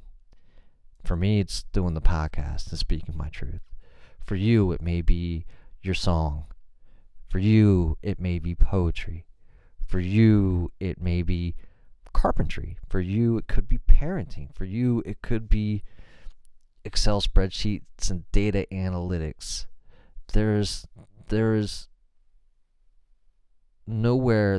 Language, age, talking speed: English, 30-49, 115 wpm